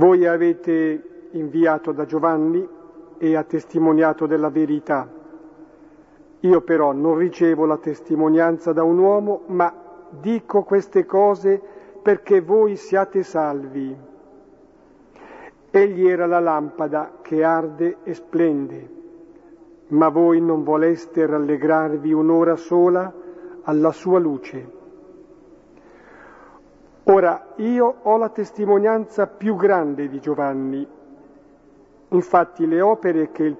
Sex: male